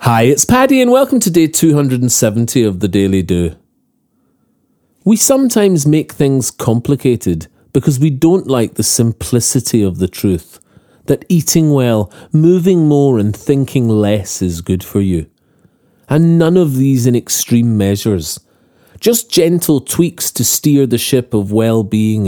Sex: male